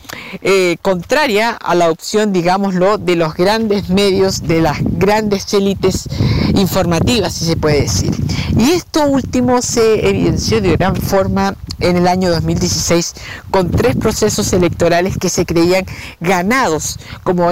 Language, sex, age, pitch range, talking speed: Spanish, female, 50-69, 170-200 Hz, 135 wpm